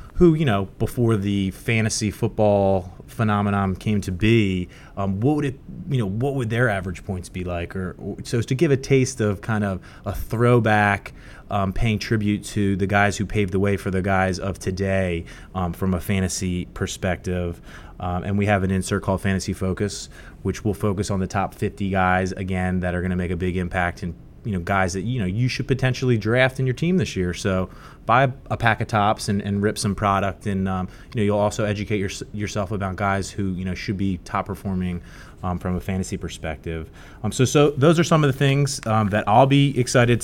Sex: male